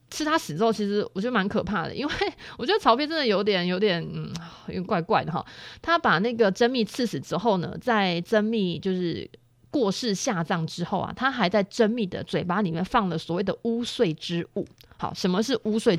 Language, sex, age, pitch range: Chinese, female, 30-49, 175-225 Hz